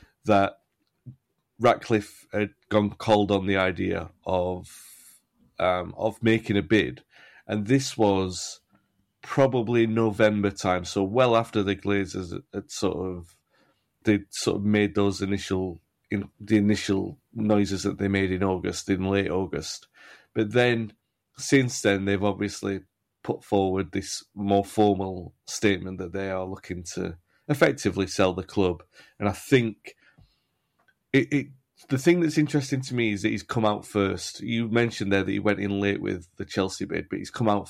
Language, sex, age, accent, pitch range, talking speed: English, male, 30-49, British, 95-115 Hz, 160 wpm